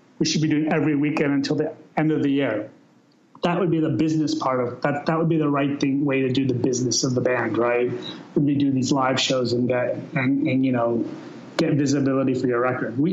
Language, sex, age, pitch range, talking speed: English, male, 30-49, 130-150 Hz, 240 wpm